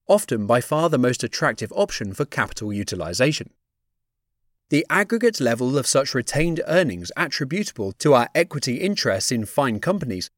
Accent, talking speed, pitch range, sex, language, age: British, 145 wpm, 115-180 Hz, male, English, 30-49